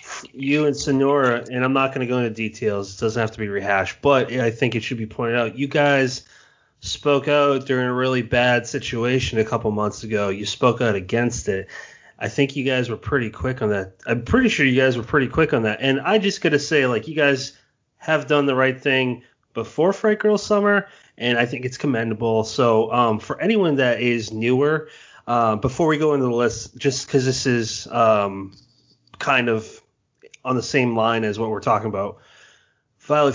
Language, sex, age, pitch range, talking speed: English, male, 30-49, 115-145 Hz, 210 wpm